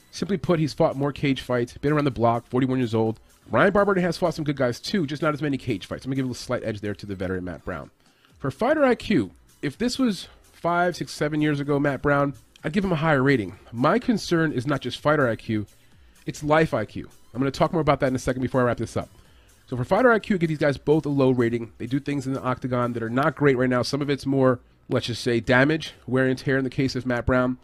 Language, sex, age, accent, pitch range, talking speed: English, male, 30-49, American, 120-150 Hz, 270 wpm